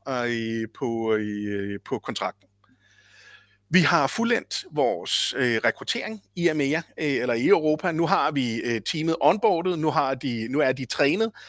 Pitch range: 120-160 Hz